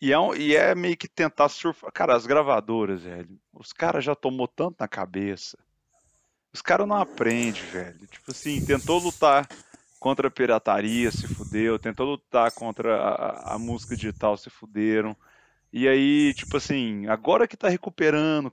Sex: male